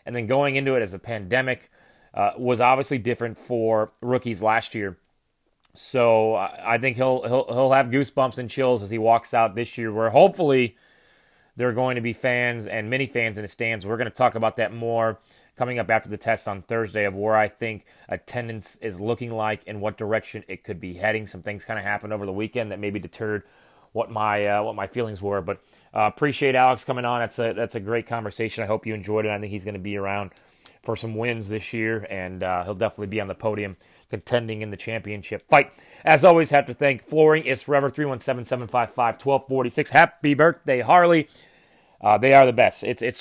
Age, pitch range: 30-49, 110-130 Hz